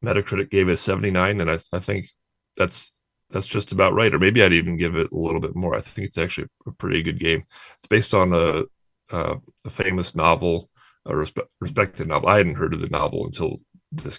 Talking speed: 225 wpm